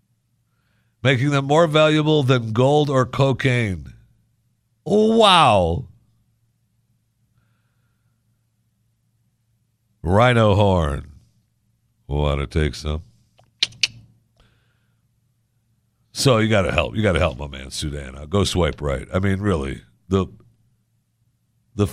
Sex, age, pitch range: male, 60-79, 100-120 Hz